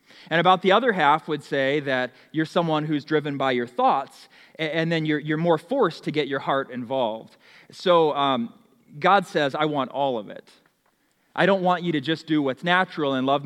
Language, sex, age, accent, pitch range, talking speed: English, male, 30-49, American, 135-170 Hz, 205 wpm